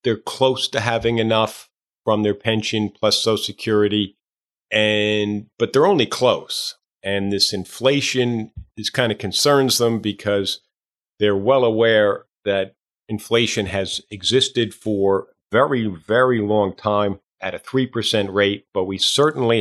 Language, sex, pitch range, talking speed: English, male, 100-120 Hz, 140 wpm